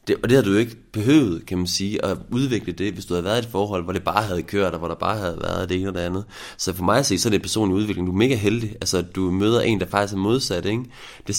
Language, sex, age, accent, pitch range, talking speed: Danish, male, 30-49, native, 95-125 Hz, 325 wpm